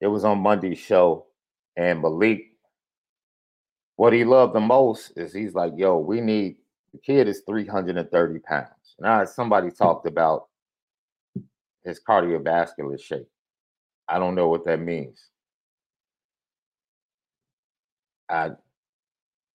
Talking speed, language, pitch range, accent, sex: 115 wpm, English, 90-110 Hz, American, male